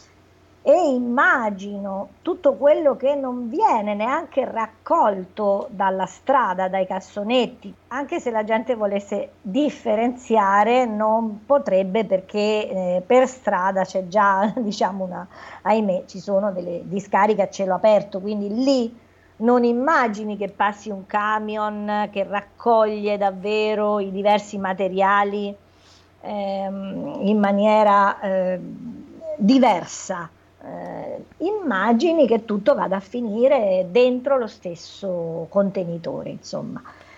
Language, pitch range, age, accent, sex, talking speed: Italian, 190-245 Hz, 40-59, native, female, 110 wpm